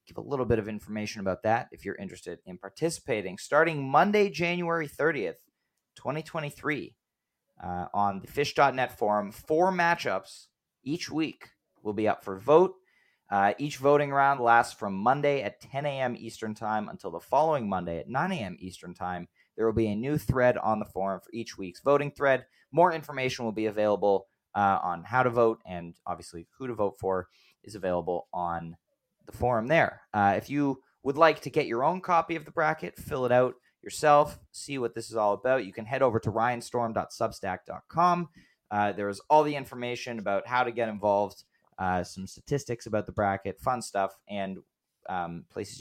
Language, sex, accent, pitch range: English, male, American, 100-140 Hz